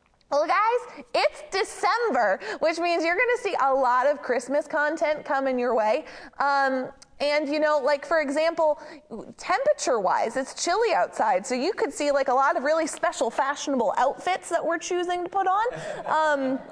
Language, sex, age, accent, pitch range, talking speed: English, female, 20-39, American, 285-385 Hz, 170 wpm